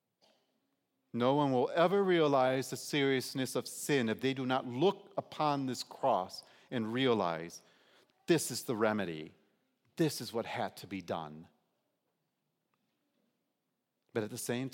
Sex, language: male, English